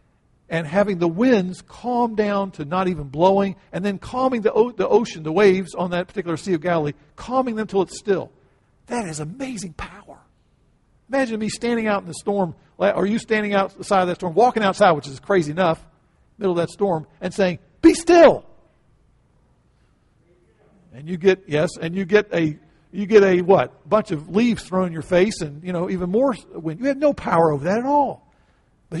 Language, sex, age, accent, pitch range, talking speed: English, male, 50-69, American, 160-210 Hz, 200 wpm